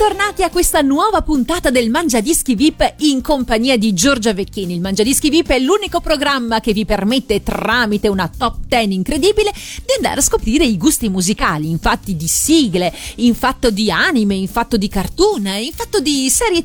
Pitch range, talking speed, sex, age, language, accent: 210-300 Hz, 165 wpm, female, 40-59, Italian, native